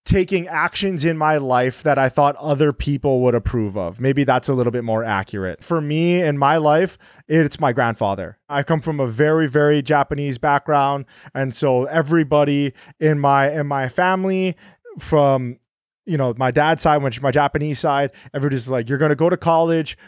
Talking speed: 185 wpm